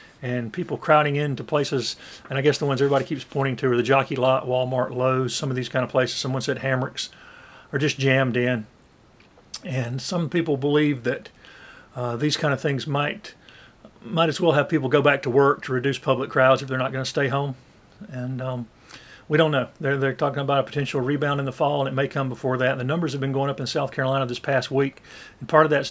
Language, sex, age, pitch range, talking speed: English, male, 50-69, 130-155 Hz, 235 wpm